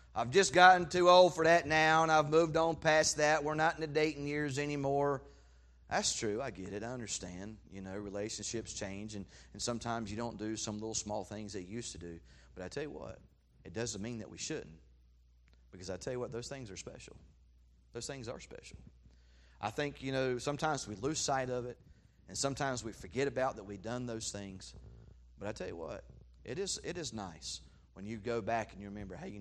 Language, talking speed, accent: English, 220 wpm, American